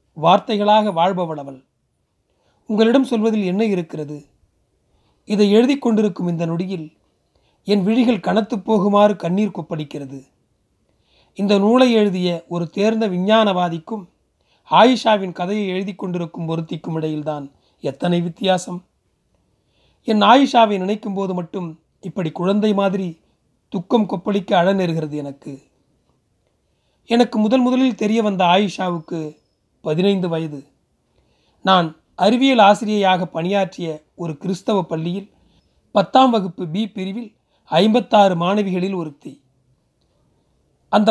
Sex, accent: male, native